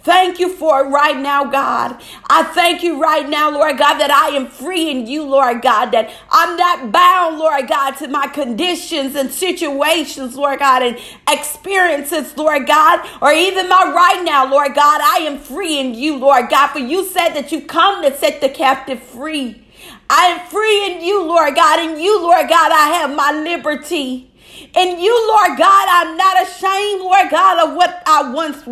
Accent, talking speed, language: American, 190 wpm, English